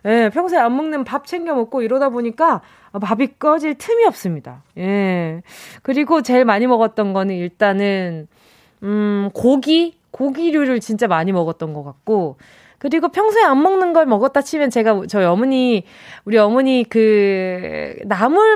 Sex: female